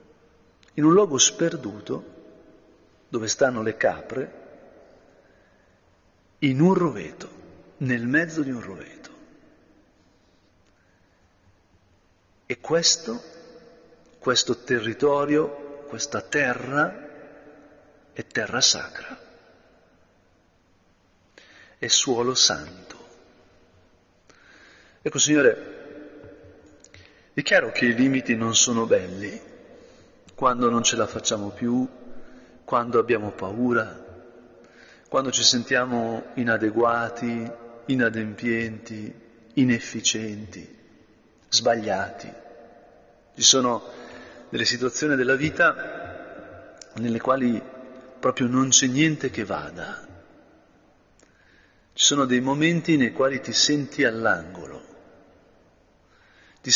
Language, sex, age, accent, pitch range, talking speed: Italian, male, 50-69, native, 110-140 Hz, 80 wpm